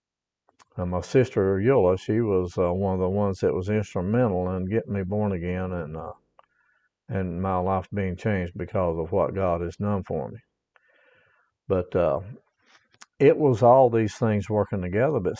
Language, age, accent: English, 50-69, American